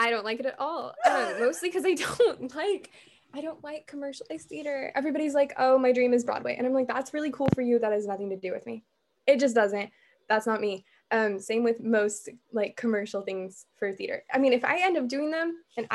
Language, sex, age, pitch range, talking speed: English, female, 10-29, 230-295 Hz, 235 wpm